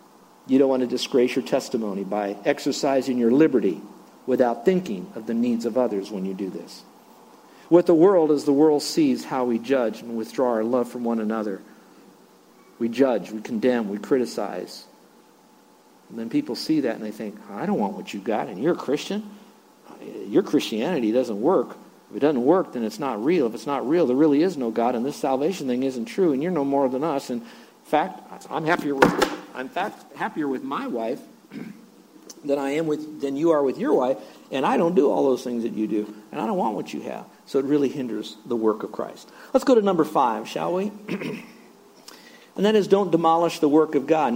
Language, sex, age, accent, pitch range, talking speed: English, male, 50-69, American, 120-175 Hz, 215 wpm